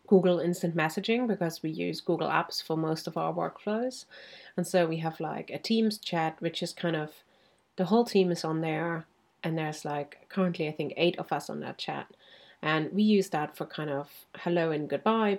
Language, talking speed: English, 205 wpm